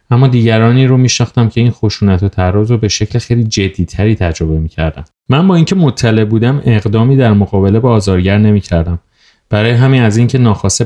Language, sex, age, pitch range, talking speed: Persian, male, 30-49, 90-115 Hz, 170 wpm